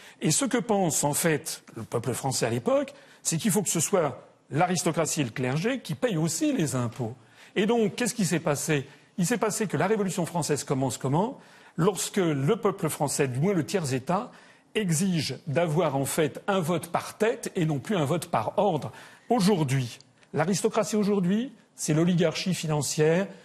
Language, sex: French, male